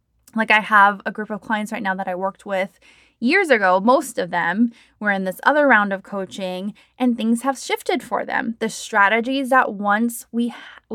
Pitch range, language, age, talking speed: 195-255 Hz, English, 20-39, 205 wpm